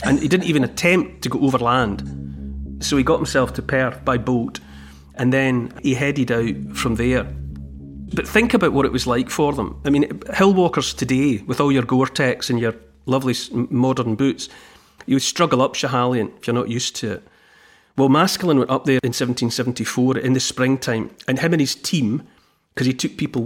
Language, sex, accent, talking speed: English, male, British, 190 wpm